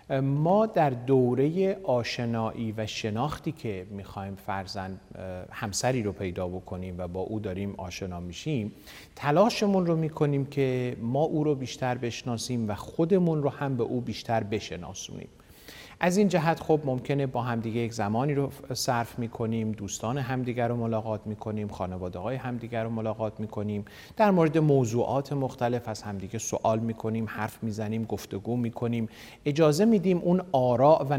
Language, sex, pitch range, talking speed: Persian, male, 105-140 Hz, 160 wpm